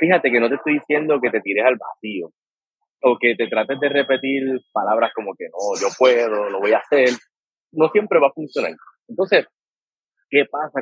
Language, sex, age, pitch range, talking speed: English, male, 30-49, 125-195 Hz, 195 wpm